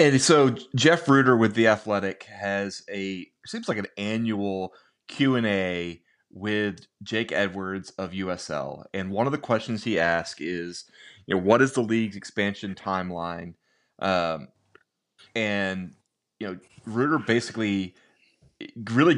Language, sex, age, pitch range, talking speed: English, male, 30-49, 95-120 Hz, 140 wpm